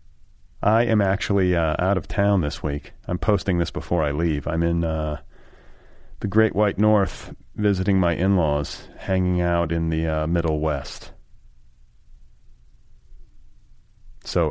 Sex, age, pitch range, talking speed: male, 30-49, 75-100 Hz, 135 wpm